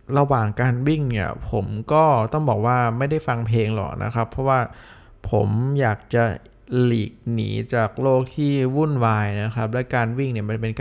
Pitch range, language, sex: 110-140 Hz, Thai, male